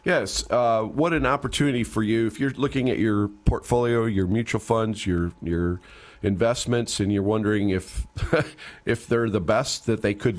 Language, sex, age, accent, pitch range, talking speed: English, male, 40-59, American, 100-125 Hz, 175 wpm